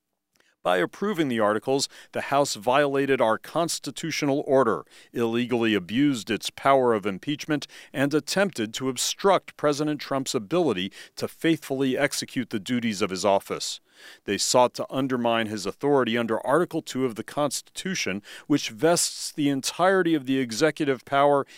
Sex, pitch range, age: male, 120-150 Hz, 40-59